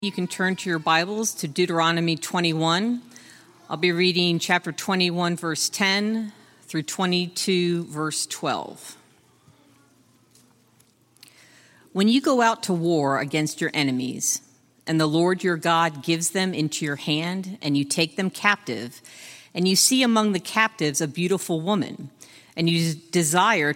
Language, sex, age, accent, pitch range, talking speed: English, female, 50-69, American, 140-185 Hz, 140 wpm